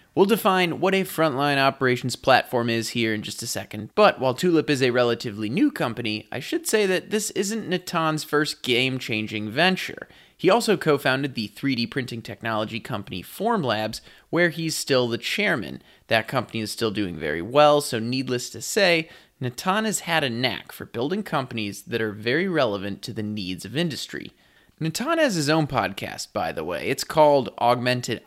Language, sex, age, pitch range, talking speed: English, male, 20-39, 115-155 Hz, 180 wpm